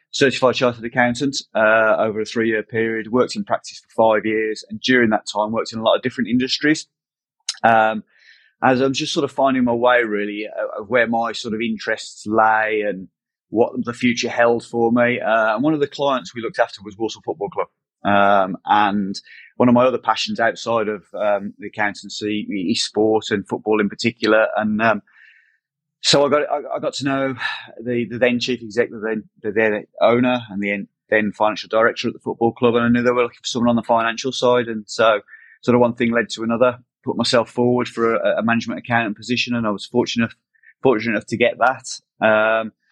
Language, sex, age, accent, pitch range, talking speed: English, male, 30-49, British, 110-125 Hz, 210 wpm